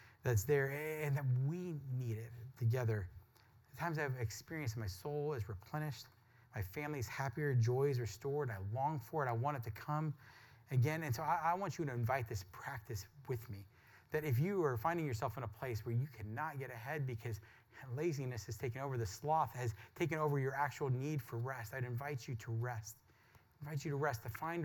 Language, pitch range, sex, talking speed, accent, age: English, 115-145 Hz, male, 205 wpm, American, 30-49